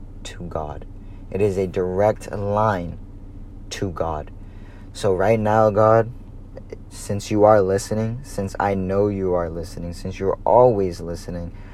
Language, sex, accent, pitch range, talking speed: English, male, American, 90-100 Hz, 140 wpm